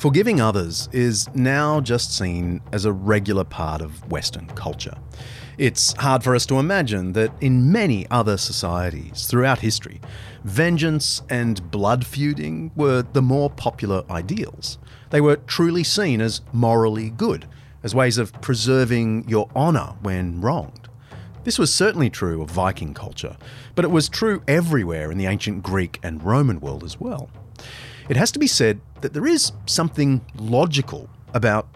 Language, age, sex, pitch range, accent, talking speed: English, 30-49, male, 105-145 Hz, Australian, 155 wpm